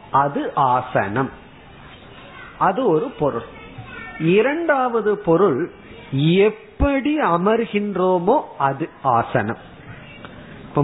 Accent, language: native, Tamil